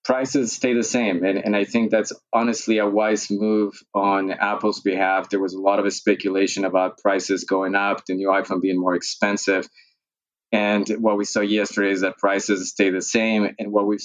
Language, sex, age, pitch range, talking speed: English, male, 20-39, 95-110 Hz, 200 wpm